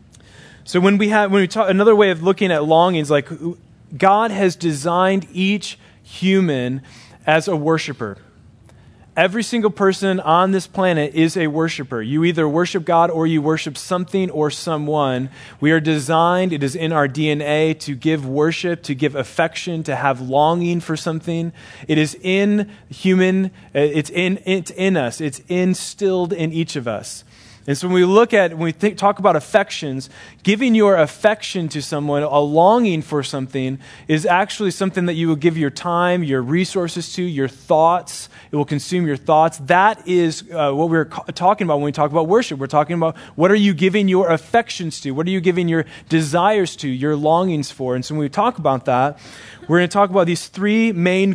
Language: English